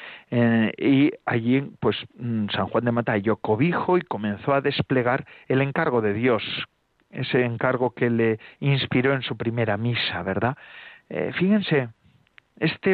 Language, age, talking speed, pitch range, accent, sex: Spanish, 40-59, 145 wpm, 115-155 Hz, Spanish, male